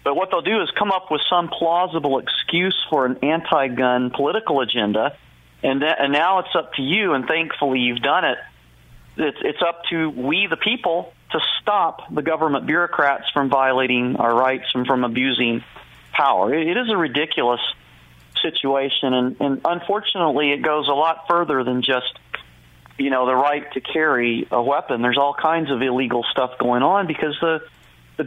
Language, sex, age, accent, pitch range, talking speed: English, male, 40-59, American, 130-160 Hz, 180 wpm